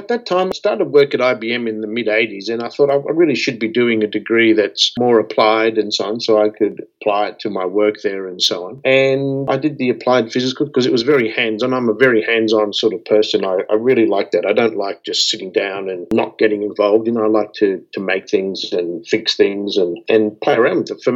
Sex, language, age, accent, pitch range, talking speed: male, English, 50-69, Australian, 110-130 Hz, 260 wpm